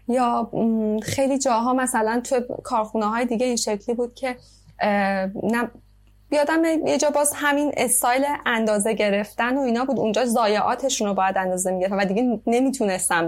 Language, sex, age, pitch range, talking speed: Persian, female, 20-39, 200-265 Hz, 145 wpm